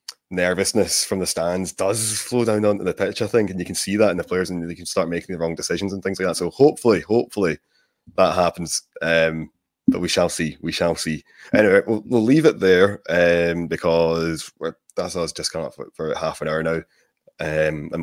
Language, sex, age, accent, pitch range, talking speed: English, male, 20-39, British, 85-95 Hz, 225 wpm